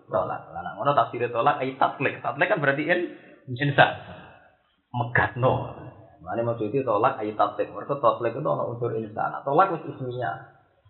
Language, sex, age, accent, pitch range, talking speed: Indonesian, male, 20-39, native, 115-160 Hz, 150 wpm